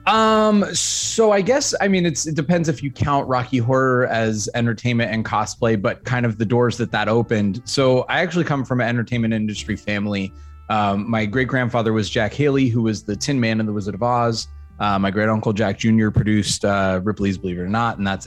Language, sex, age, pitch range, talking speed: English, male, 20-39, 105-125 Hz, 215 wpm